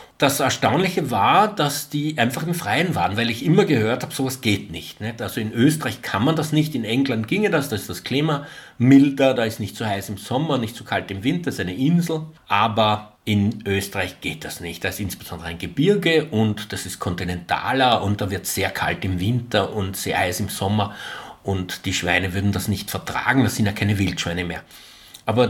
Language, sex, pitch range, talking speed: German, male, 100-135 Hz, 215 wpm